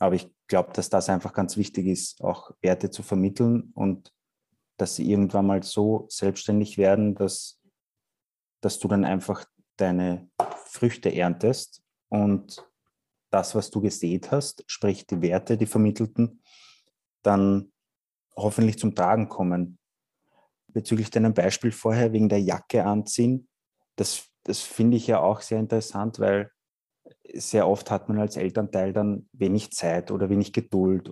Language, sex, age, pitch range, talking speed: German, male, 20-39, 95-110 Hz, 145 wpm